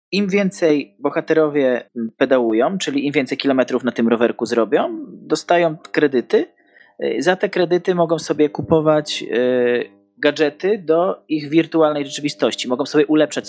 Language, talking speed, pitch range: Polish, 125 wpm, 125-165 Hz